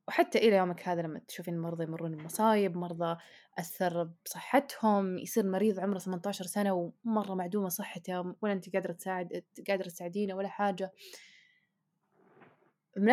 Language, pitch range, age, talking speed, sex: Arabic, 175-215 Hz, 20-39, 135 wpm, female